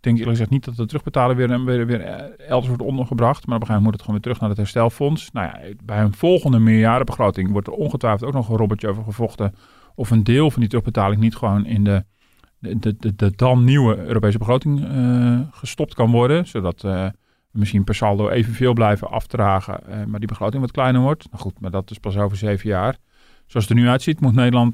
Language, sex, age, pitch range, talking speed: Dutch, male, 40-59, 110-135 Hz, 235 wpm